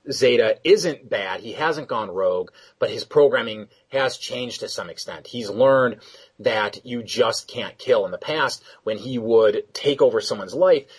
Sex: male